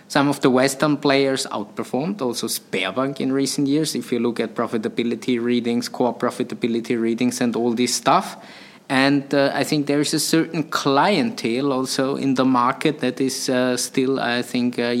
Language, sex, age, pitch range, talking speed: English, male, 20-39, 120-140 Hz, 175 wpm